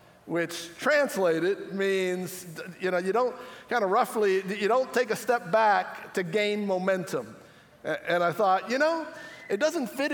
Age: 60-79